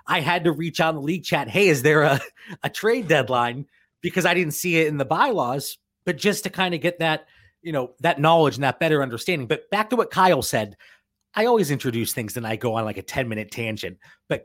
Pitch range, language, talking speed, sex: 140-185 Hz, English, 245 wpm, male